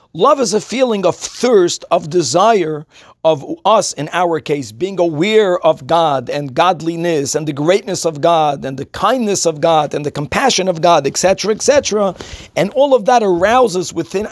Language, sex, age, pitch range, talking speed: English, male, 50-69, 170-230 Hz, 175 wpm